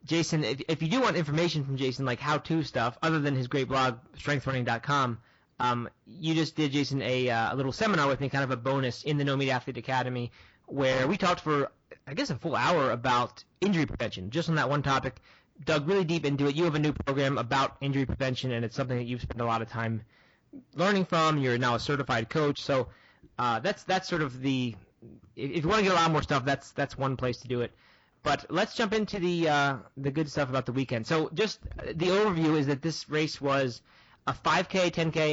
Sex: male